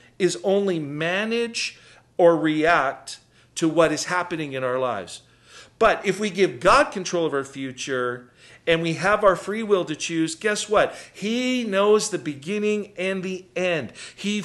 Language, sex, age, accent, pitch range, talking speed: English, male, 50-69, American, 150-205 Hz, 160 wpm